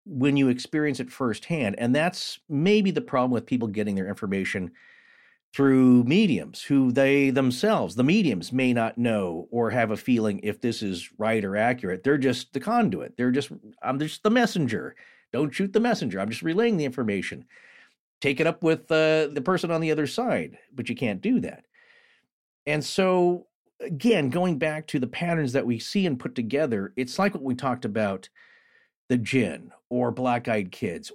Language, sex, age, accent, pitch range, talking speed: English, male, 40-59, American, 125-185 Hz, 185 wpm